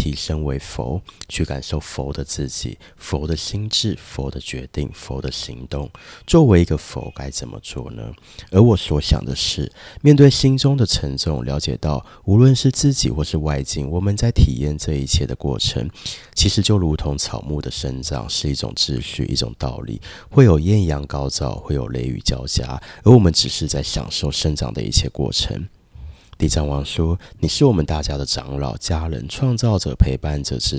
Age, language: 30-49, Chinese